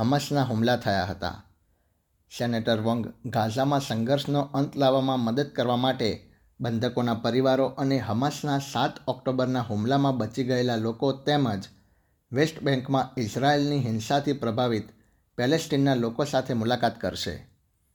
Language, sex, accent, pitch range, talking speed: Gujarati, male, native, 110-135 Hz, 110 wpm